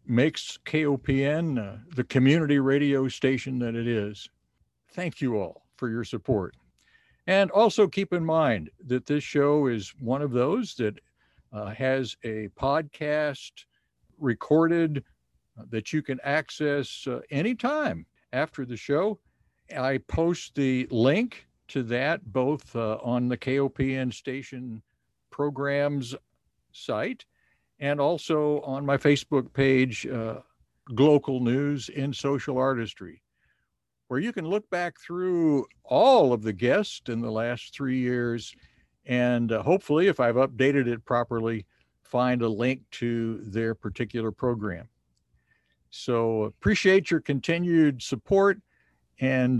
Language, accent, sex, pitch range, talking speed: English, American, male, 115-150 Hz, 130 wpm